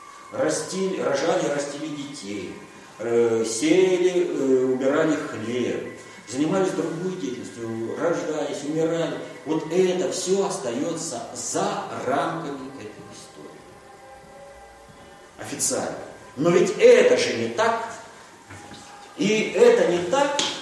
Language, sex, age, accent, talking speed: Russian, male, 40-59, native, 95 wpm